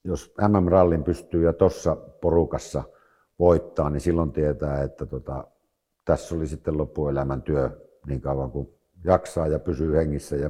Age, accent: 60-79, native